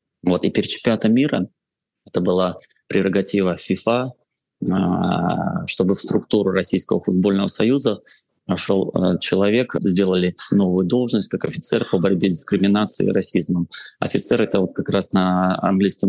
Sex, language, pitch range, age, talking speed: male, Russian, 90-100 Hz, 20-39, 125 wpm